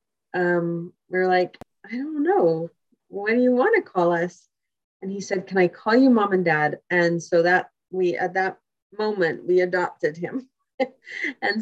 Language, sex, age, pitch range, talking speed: English, female, 30-49, 165-195 Hz, 180 wpm